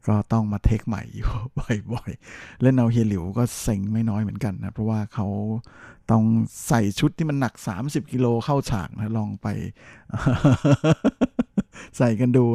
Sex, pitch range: male, 105-125 Hz